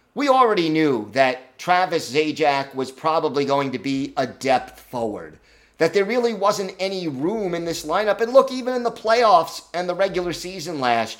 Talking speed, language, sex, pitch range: 180 wpm, English, male, 140-170 Hz